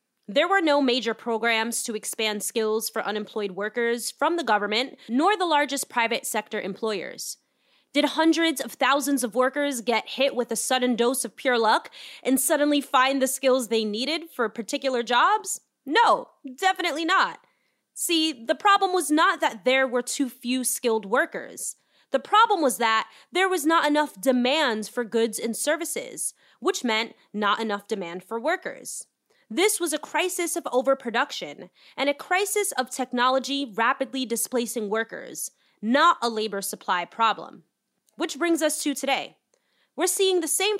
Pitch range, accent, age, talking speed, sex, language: 230-320 Hz, American, 20-39, 160 wpm, female, English